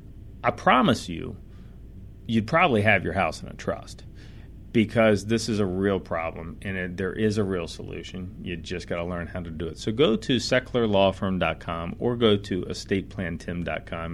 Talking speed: 170 wpm